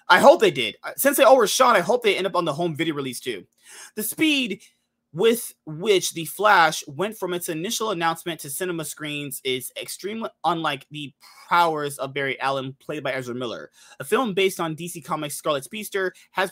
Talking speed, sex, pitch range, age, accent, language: 200 wpm, male, 140-190 Hz, 20-39, American, English